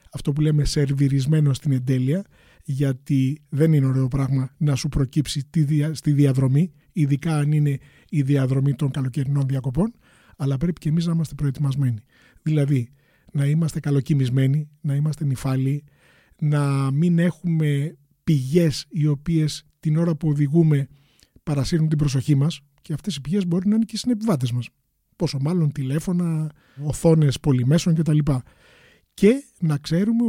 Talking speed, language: 145 wpm, Greek